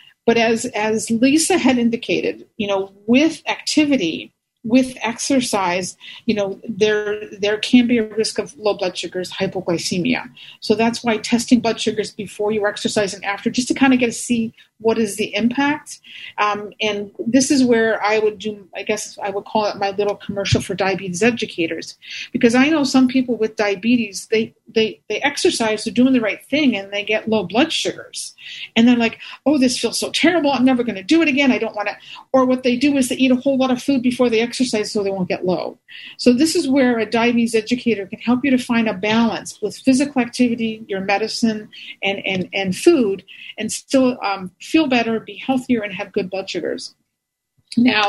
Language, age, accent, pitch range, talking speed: English, 40-59, American, 200-245 Hz, 205 wpm